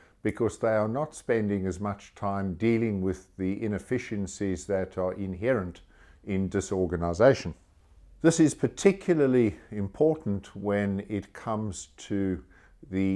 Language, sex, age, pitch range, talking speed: English, male, 50-69, 90-110 Hz, 120 wpm